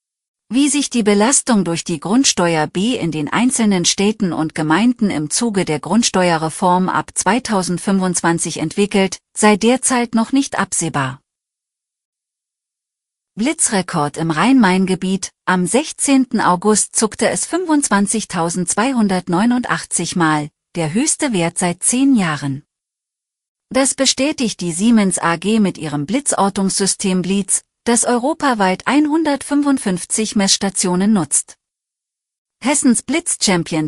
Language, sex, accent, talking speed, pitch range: German, female, German, 105 wpm, 175-235 Hz